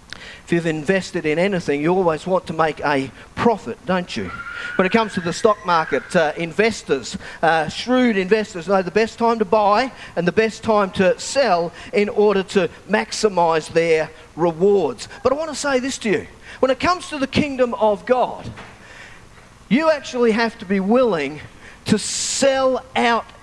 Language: English